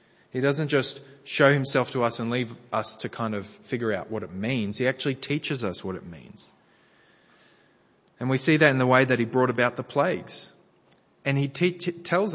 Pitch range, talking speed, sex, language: 120-150 Hz, 200 wpm, male, English